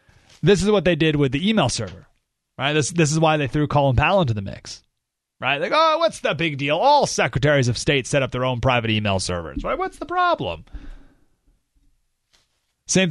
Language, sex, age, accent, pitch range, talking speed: English, male, 30-49, American, 130-190 Hz, 200 wpm